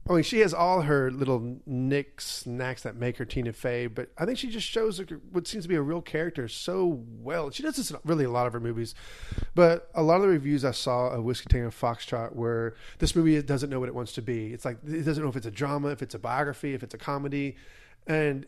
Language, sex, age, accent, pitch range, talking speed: English, male, 30-49, American, 120-160 Hz, 255 wpm